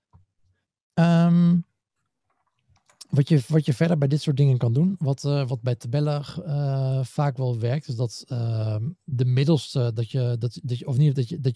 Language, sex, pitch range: Dutch, male, 110-135 Hz